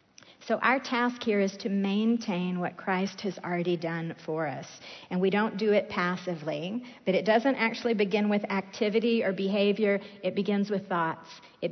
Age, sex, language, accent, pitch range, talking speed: 50-69, female, English, American, 180-210 Hz, 175 wpm